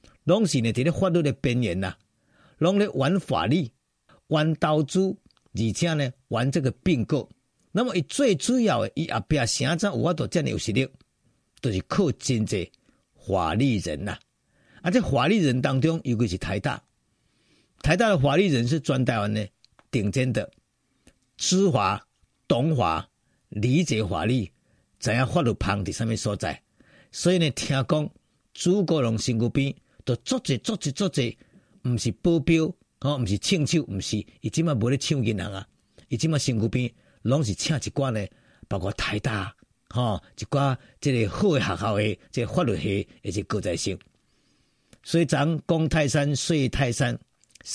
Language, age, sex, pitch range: Chinese, 50-69, male, 110-160 Hz